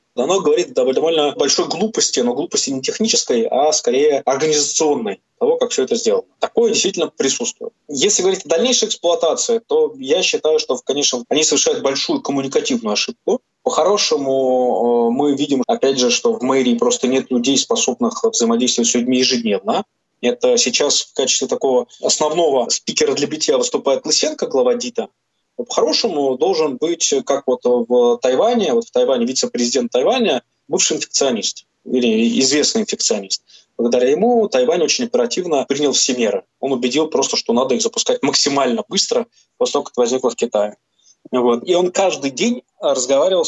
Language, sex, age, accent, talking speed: Russian, male, 20-39, native, 155 wpm